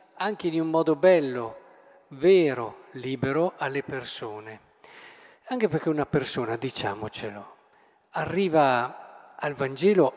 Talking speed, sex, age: 100 wpm, male, 50-69